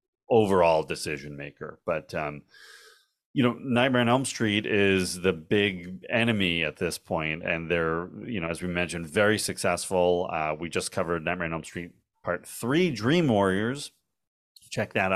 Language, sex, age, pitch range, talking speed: English, male, 30-49, 85-110 Hz, 160 wpm